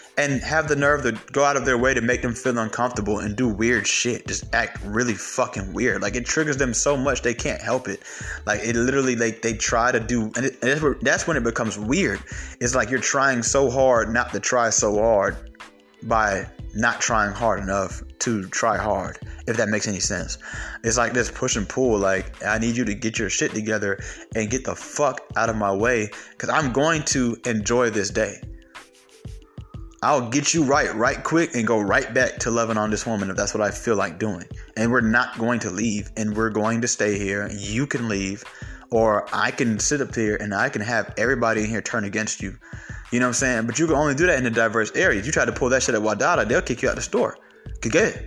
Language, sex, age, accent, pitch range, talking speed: English, male, 20-39, American, 105-130 Hz, 235 wpm